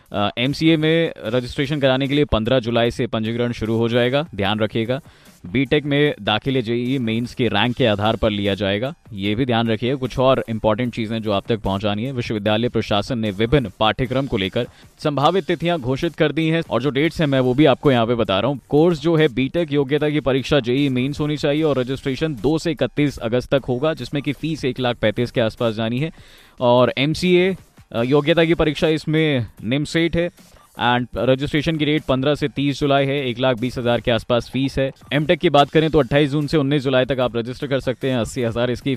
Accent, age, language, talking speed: native, 20-39, Hindi, 215 wpm